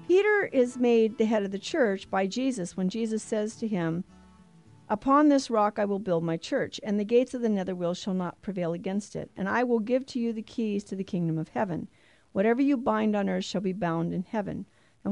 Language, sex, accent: English, female, American